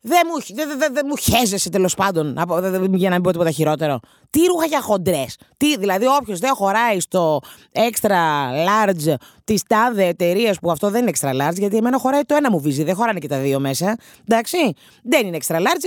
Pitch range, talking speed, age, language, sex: 155-255 Hz, 205 wpm, 30-49, Greek, female